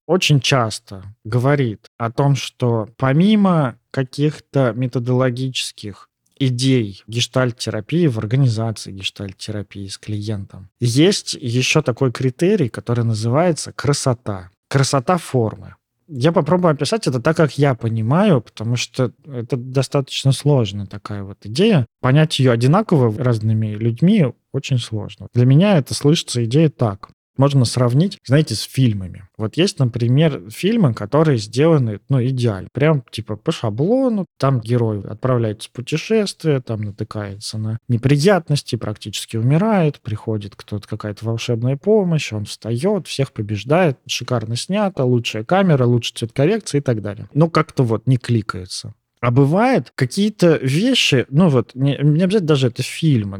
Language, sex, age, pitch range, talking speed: Russian, male, 20-39, 110-150 Hz, 135 wpm